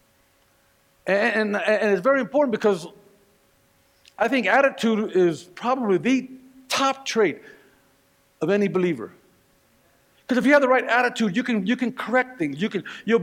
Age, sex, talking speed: 50-69, male, 155 wpm